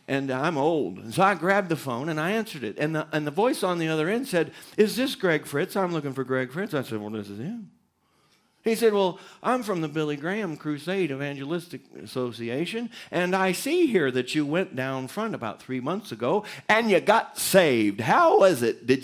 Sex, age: male, 50-69